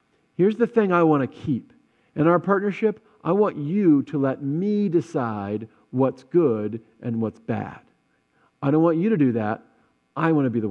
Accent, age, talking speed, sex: American, 40-59, 190 wpm, male